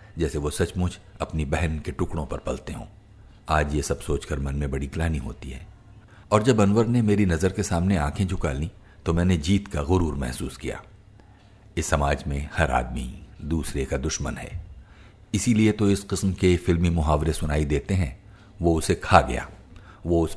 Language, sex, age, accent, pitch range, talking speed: Hindi, male, 50-69, native, 75-100 Hz, 185 wpm